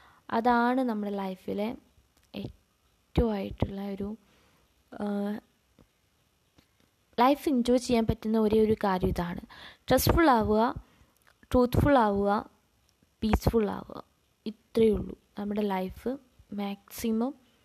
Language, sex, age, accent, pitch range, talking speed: Malayalam, female, 20-39, native, 200-255 Hz, 75 wpm